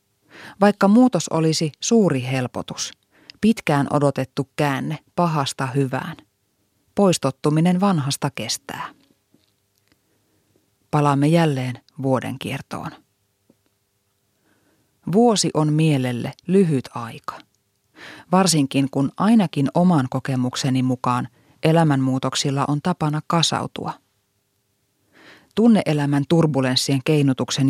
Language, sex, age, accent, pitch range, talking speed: Finnish, female, 30-49, native, 125-165 Hz, 75 wpm